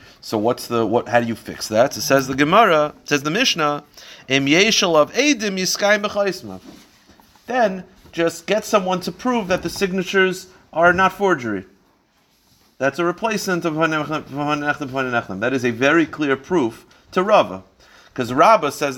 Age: 40-59